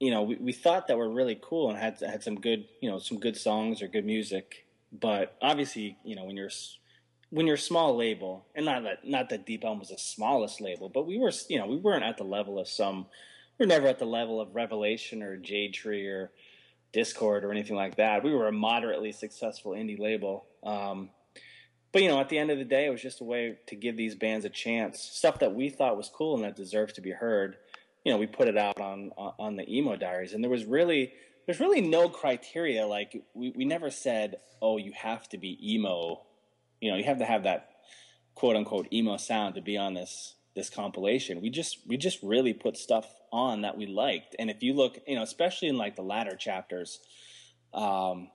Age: 20-39